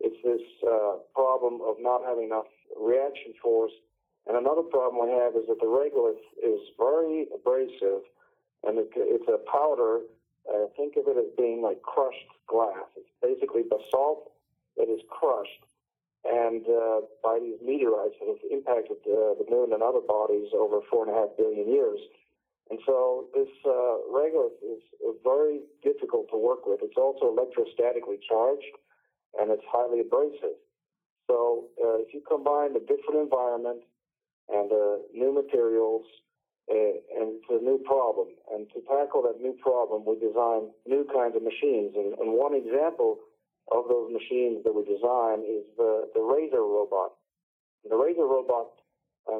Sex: male